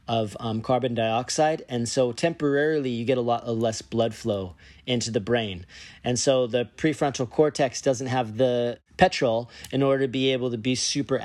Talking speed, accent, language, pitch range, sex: 185 wpm, American, English, 115-145 Hz, male